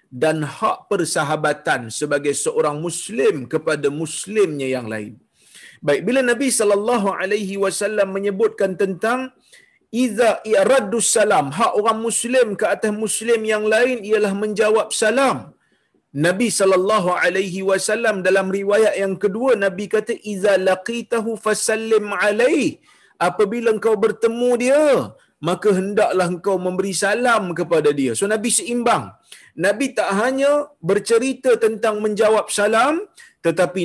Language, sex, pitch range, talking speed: Malayalam, male, 180-230 Hz, 120 wpm